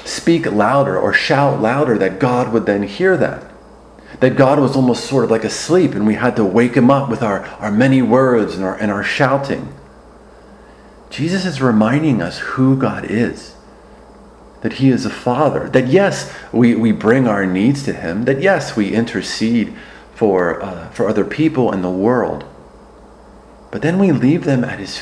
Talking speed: 180 wpm